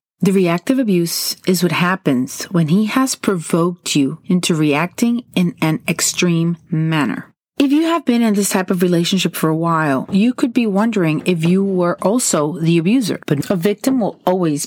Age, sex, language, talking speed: 30-49, female, English, 180 wpm